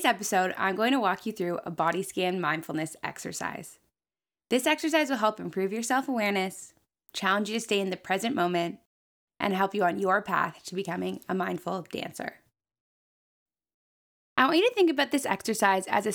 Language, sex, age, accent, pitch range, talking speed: English, female, 20-39, American, 190-255 Hz, 180 wpm